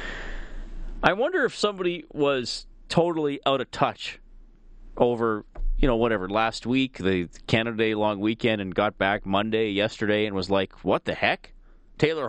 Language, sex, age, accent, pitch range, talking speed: English, male, 40-59, American, 115-170 Hz, 155 wpm